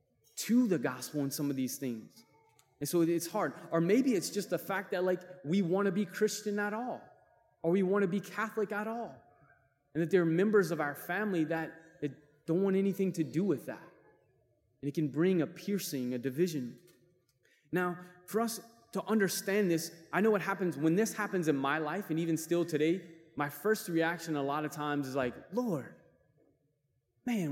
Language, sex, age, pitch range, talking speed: English, male, 20-39, 150-195 Hz, 195 wpm